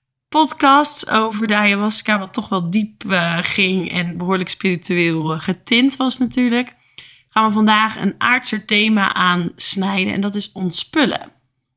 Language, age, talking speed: Dutch, 20-39, 145 wpm